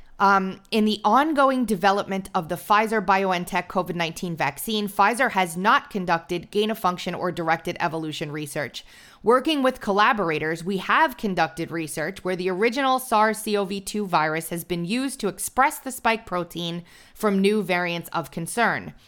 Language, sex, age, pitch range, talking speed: English, female, 30-49, 175-220 Hz, 140 wpm